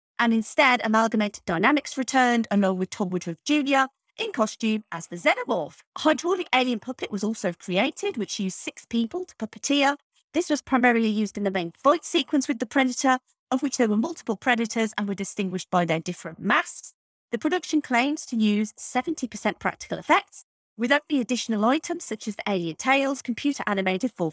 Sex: female